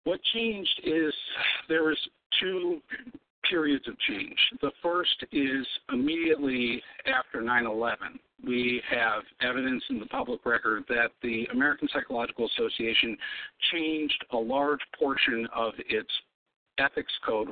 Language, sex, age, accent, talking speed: English, male, 50-69, American, 120 wpm